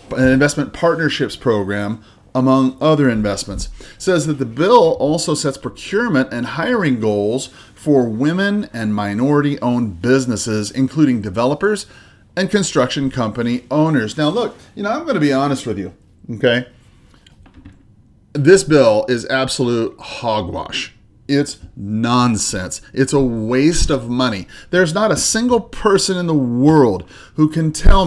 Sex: male